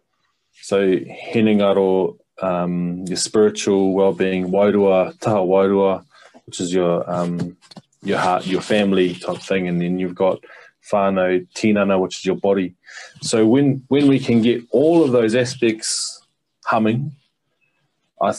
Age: 20-39